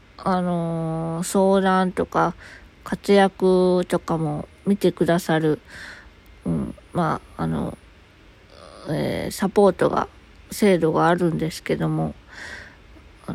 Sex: female